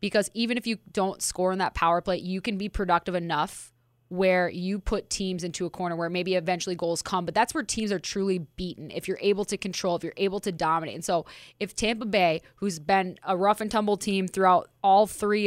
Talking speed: 220 wpm